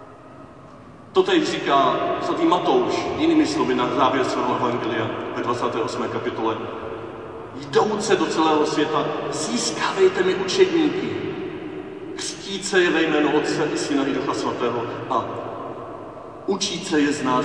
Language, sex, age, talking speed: Czech, male, 40-59, 120 wpm